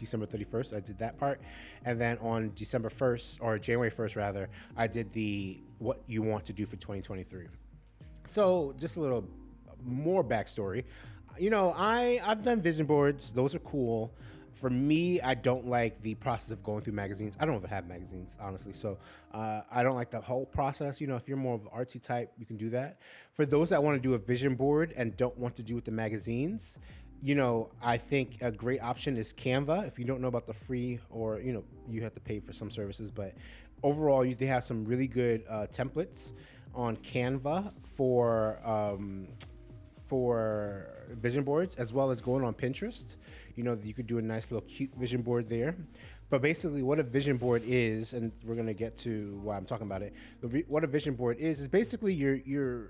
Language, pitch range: English, 110-135 Hz